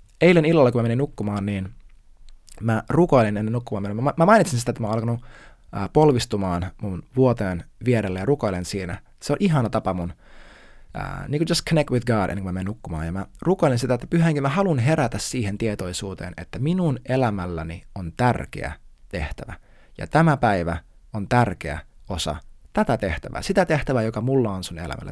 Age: 20-39